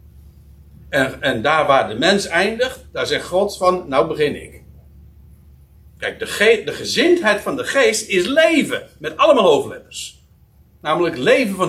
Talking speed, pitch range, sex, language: 155 wpm, 145-240 Hz, male, Dutch